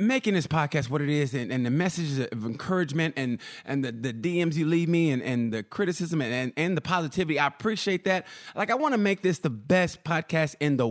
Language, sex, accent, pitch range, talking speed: English, male, American, 140-190 Hz, 235 wpm